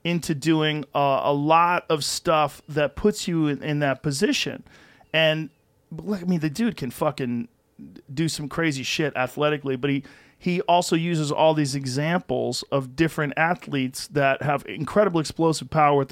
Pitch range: 135-160 Hz